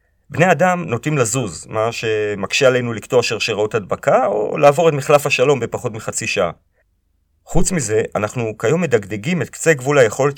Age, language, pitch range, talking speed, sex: 40-59, Hebrew, 110-150 Hz, 155 wpm, male